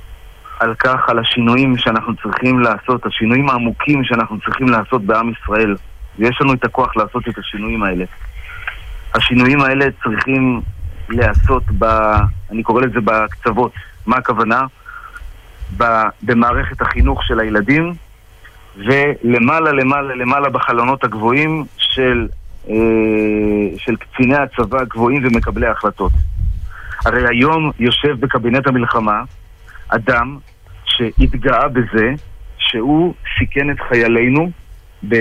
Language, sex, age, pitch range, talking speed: Hebrew, male, 40-59, 105-135 Hz, 105 wpm